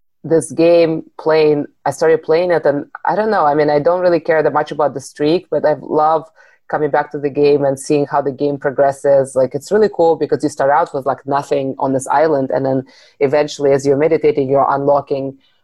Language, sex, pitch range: English, female, 140-155 Hz